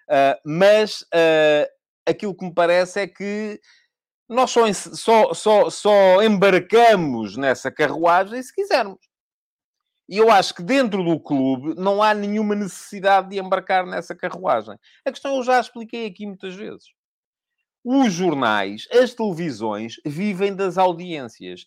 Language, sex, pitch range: English, male, 145-210 Hz